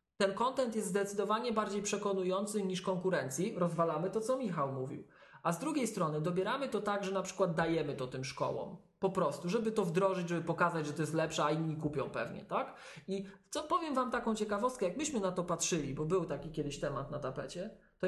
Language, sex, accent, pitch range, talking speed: Polish, male, native, 160-205 Hz, 205 wpm